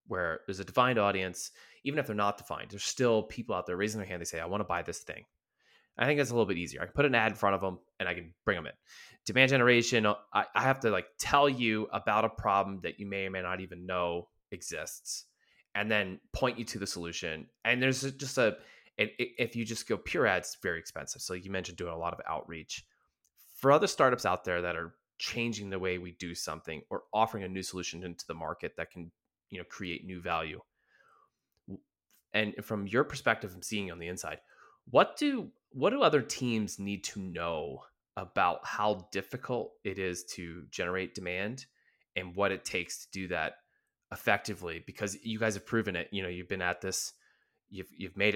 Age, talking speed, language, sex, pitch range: 20-39, 215 wpm, English, male, 90-110 Hz